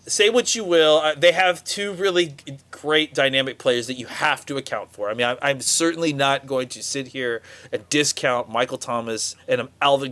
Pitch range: 125-160 Hz